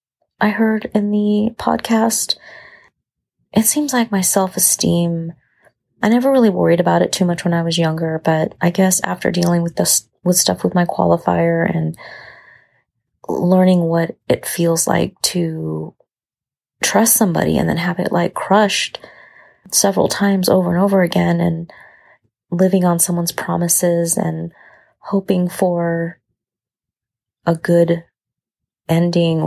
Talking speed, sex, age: 135 wpm, female, 30-49